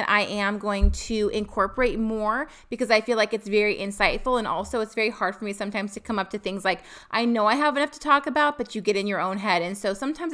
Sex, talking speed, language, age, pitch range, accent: female, 265 wpm, English, 30-49, 200-245 Hz, American